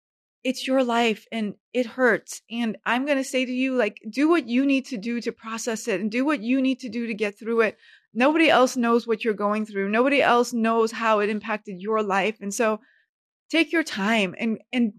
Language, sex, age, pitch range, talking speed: English, female, 30-49, 215-255 Hz, 225 wpm